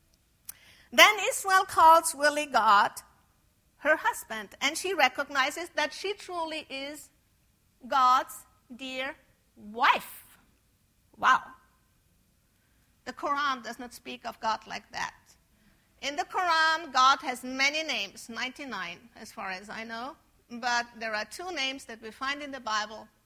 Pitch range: 225-285 Hz